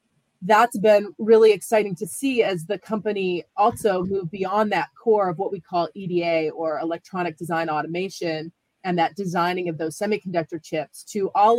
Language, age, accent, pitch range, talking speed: English, 30-49, American, 180-225 Hz, 165 wpm